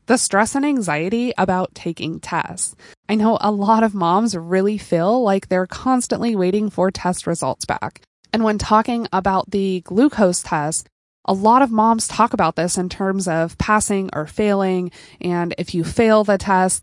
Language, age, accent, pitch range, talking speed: English, 20-39, American, 175-225 Hz, 175 wpm